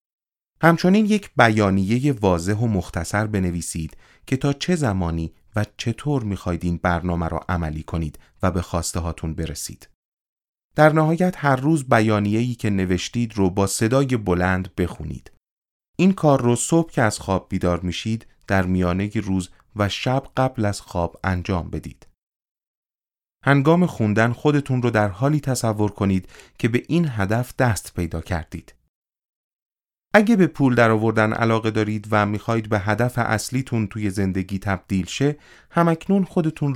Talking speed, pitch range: 140 wpm, 95-125 Hz